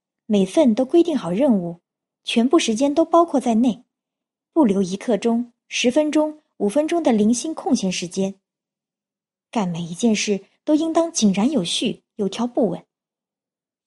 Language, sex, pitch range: Chinese, male, 190-255 Hz